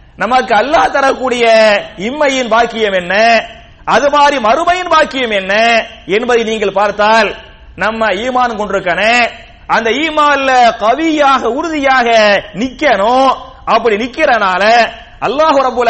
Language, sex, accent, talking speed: English, male, Indian, 95 wpm